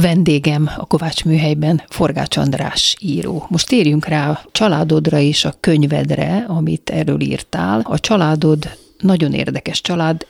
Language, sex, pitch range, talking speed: Hungarian, female, 145-170 Hz, 135 wpm